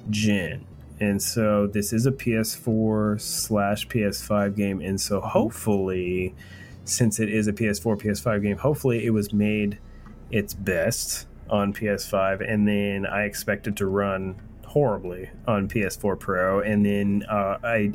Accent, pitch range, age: American, 100-110 Hz, 30-49